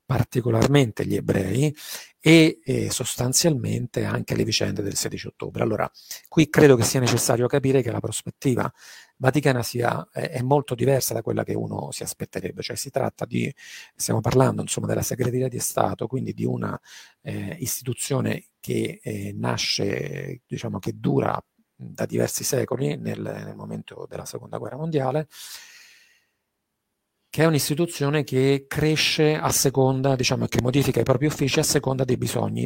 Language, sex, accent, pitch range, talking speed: Italian, male, native, 120-145 Hz, 150 wpm